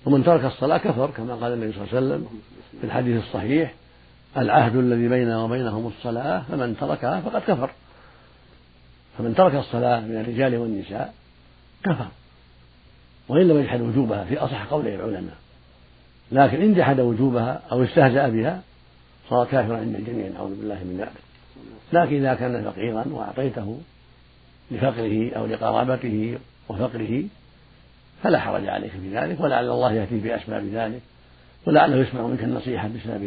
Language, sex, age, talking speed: Arabic, male, 70-89, 140 wpm